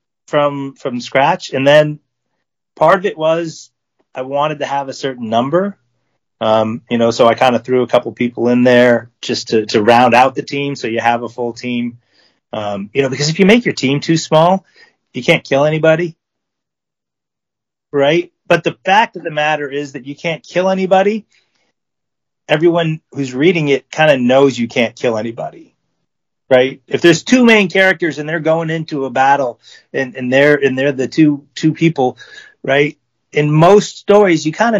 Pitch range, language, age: 125-170 Hz, English, 30-49